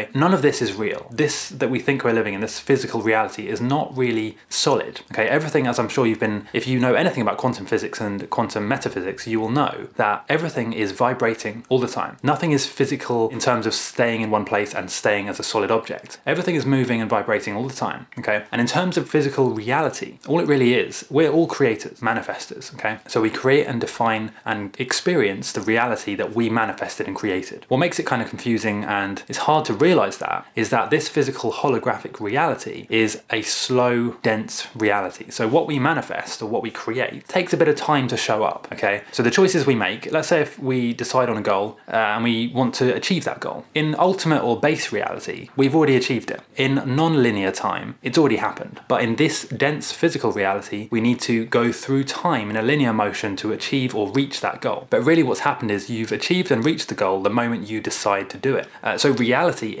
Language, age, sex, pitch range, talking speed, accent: English, 20-39, male, 110-140 Hz, 220 wpm, British